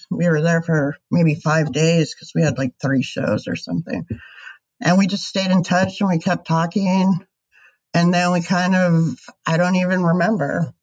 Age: 50-69